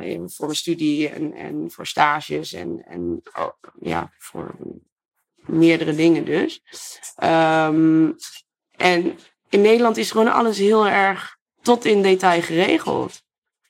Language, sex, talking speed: Dutch, female, 125 wpm